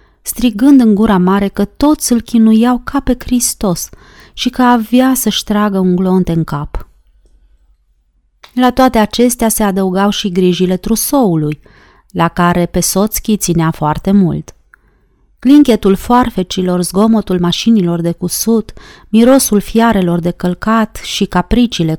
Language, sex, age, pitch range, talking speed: Romanian, female, 30-49, 180-235 Hz, 130 wpm